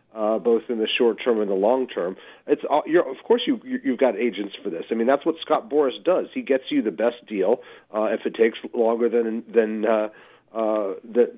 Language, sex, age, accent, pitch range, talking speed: English, male, 40-59, American, 115-135 Hz, 235 wpm